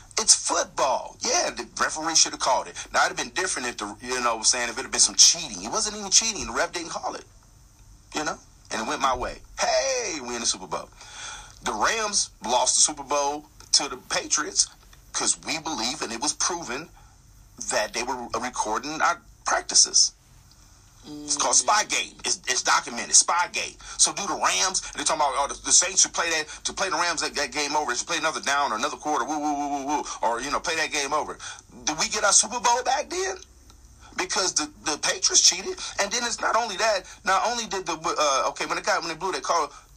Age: 40-59